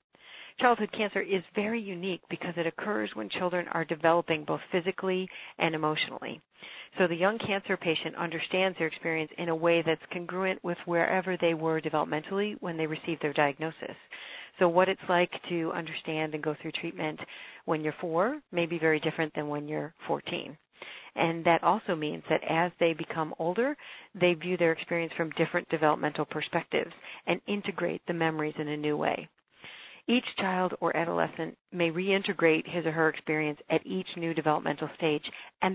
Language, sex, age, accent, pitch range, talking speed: English, female, 50-69, American, 160-190 Hz, 170 wpm